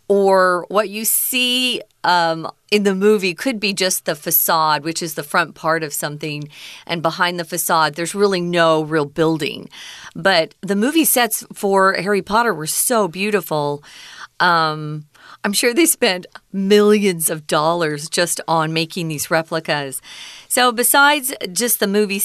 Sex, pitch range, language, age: female, 160-205 Hz, Chinese, 40-59